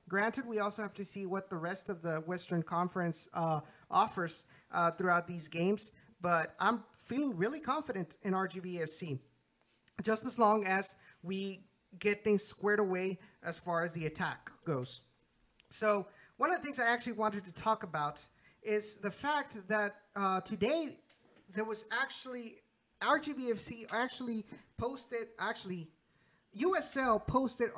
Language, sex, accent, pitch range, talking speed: English, male, American, 180-230 Hz, 145 wpm